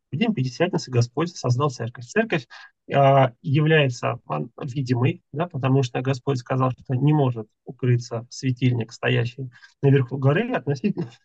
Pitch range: 130-165 Hz